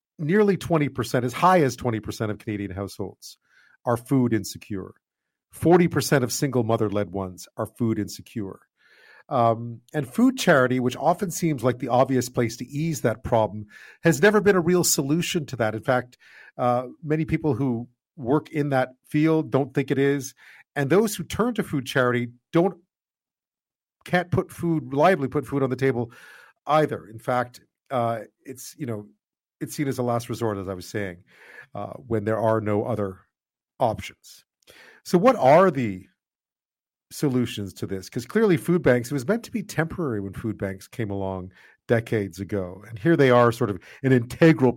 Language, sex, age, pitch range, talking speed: English, male, 40-59, 110-155 Hz, 175 wpm